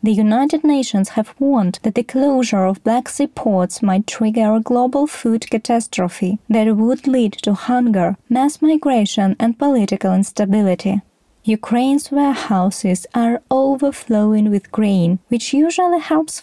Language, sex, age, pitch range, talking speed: Ukrainian, female, 20-39, 200-275 Hz, 135 wpm